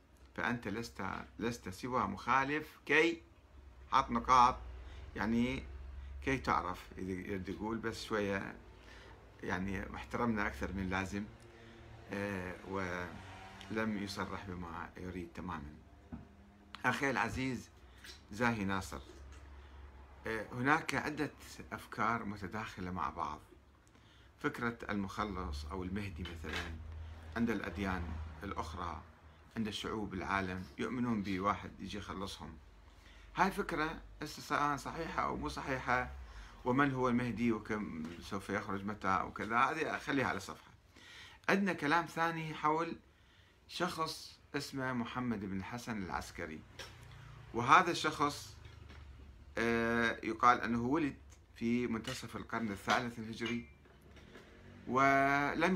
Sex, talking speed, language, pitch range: male, 95 wpm, Arabic, 85-120 Hz